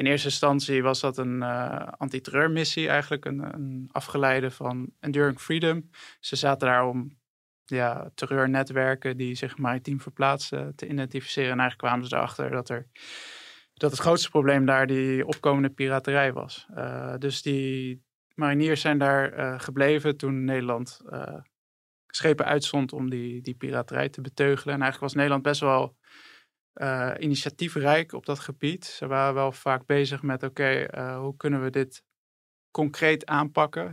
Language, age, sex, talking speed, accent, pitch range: Dutch, 20-39, male, 155 wpm, Dutch, 130-145 Hz